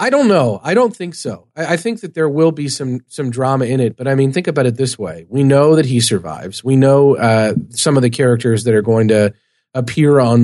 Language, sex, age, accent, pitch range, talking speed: English, male, 40-59, American, 120-150 Hz, 255 wpm